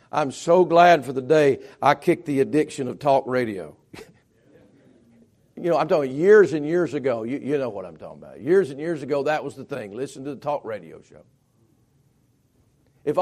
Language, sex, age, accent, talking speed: English, male, 50-69, American, 195 wpm